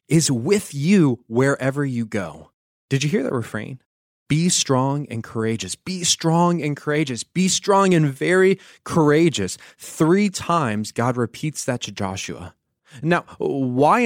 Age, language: 20-39, English